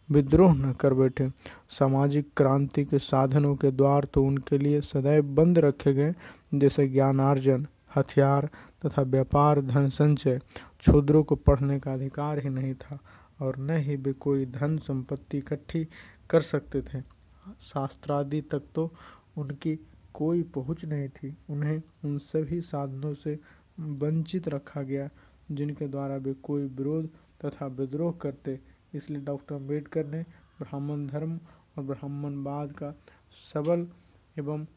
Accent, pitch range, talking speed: native, 140-150 Hz, 135 wpm